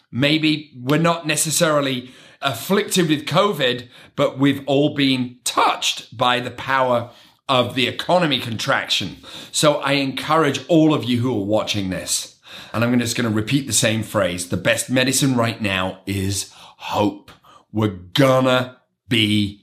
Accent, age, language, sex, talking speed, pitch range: British, 30-49, English, male, 145 wpm, 115-140 Hz